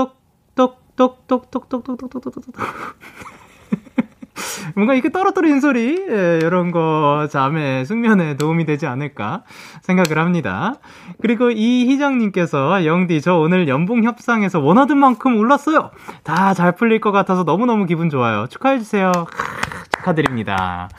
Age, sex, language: 20-39, male, Korean